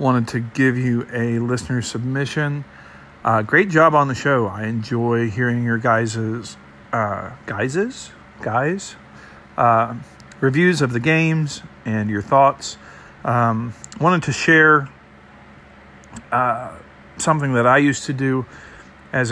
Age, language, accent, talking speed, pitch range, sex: 50-69, English, American, 125 wpm, 115-135 Hz, male